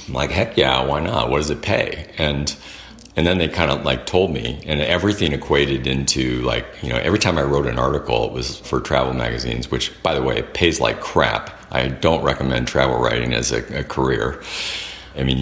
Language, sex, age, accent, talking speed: English, male, 50-69, American, 220 wpm